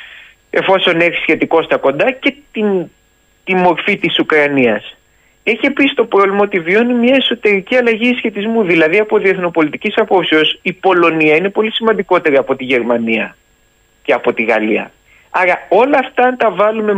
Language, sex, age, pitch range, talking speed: Greek, male, 30-49, 155-235 Hz, 150 wpm